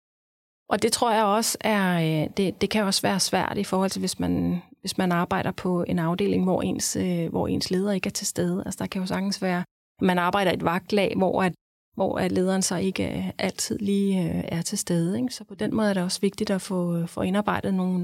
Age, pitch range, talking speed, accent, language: 30-49, 175-200 Hz, 235 wpm, native, Danish